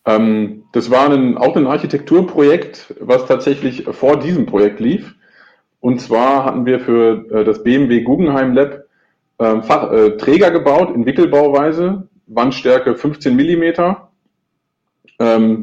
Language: German